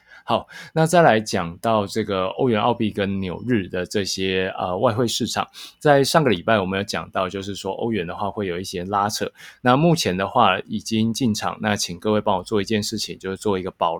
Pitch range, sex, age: 95-115 Hz, male, 20-39